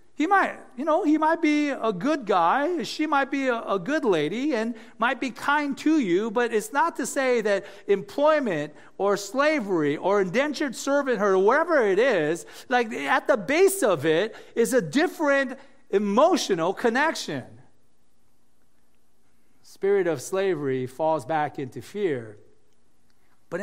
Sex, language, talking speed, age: male, English, 145 wpm, 40-59